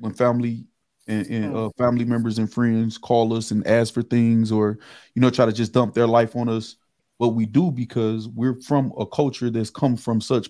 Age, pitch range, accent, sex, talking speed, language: 20-39, 110-130 Hz, American, male, 215 wpm, English